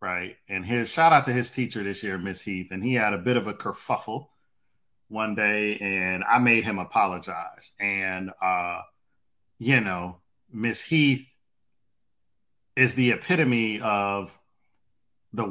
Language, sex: English, male